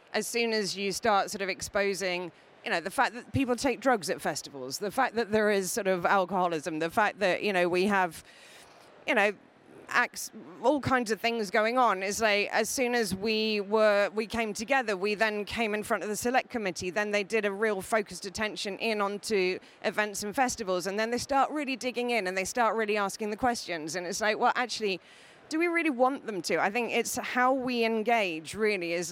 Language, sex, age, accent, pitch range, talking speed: English, female, 30-49, British, 195-235 Hz, 220 wpm